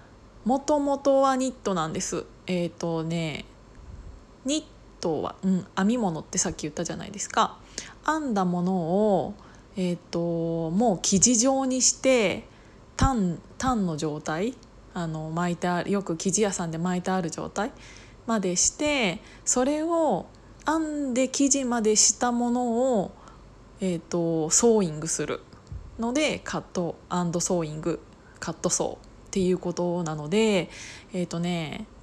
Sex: female